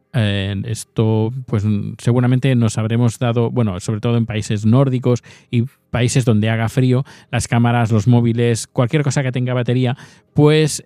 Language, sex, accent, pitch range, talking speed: Spanish, male, Spanish, 110-130 Hz, 155 wpm